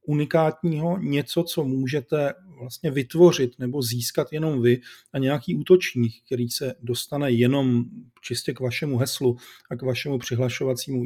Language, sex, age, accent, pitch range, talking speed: Czech, male, 40-59, native, 125-160 Hz, 135 wpm